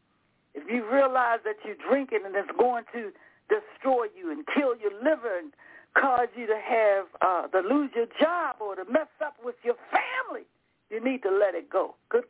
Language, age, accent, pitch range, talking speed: English, 60-79, American, 240-315 Hz, 195 wpm